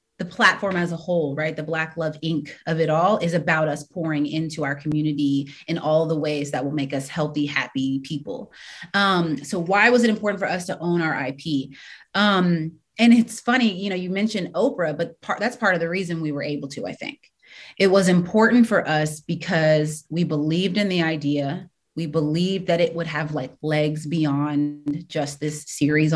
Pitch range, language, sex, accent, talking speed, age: 150-195 Hz, English, female, American, 200 wpm, 30-49